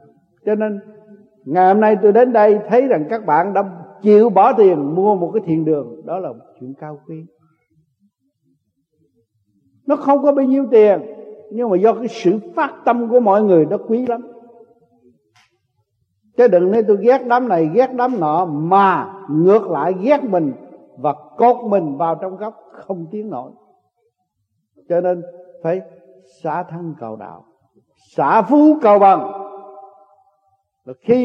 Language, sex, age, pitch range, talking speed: Vietnamese, male, 60-79, 160-230 Hz, 155 wpm